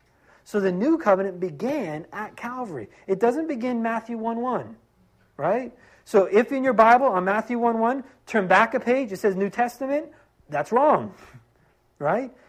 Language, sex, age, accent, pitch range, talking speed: English, male, 40-59, American, 160-225 Hz, 175 wpm